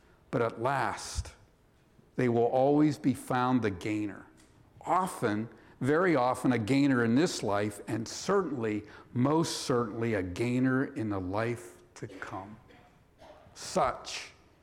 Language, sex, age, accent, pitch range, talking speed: English, male, 60-79, American, 105-135 Hz, 125 wpm